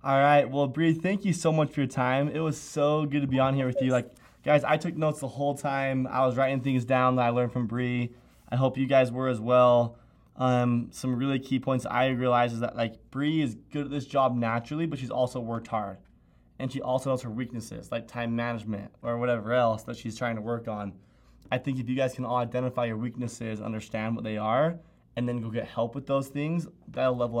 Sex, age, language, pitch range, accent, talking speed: male, 20-39, English, 115-135 Hz, American, 245 wpm